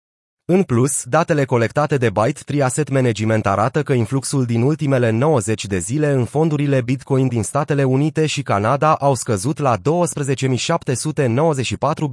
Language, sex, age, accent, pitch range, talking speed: Romanian, male, 30-49, native, 120-155 Hz, 140 wpm